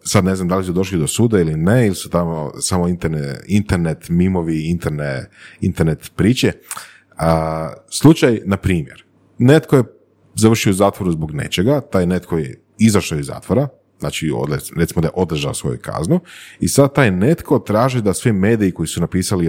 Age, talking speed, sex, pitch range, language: 30-49, 170 wpm, male, 80-100 Hz, Croatian